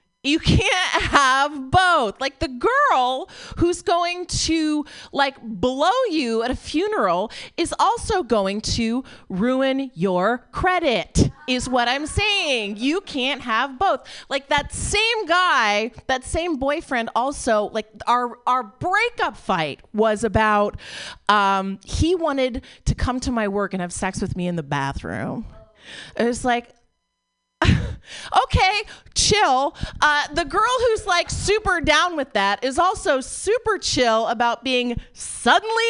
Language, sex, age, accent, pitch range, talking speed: English, female, 30-49, American, 200-315 Hz, 140 wpm